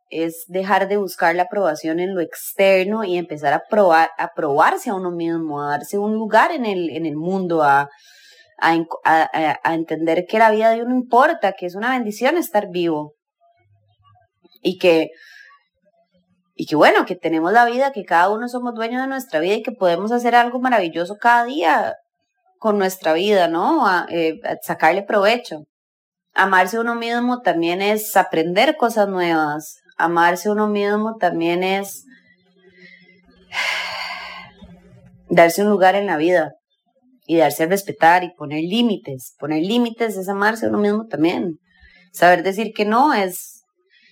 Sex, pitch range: female, 170-230 Hz